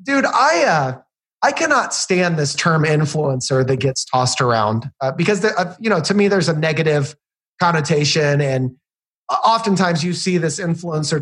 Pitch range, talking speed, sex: 150-205 Hz, 165 wpm, male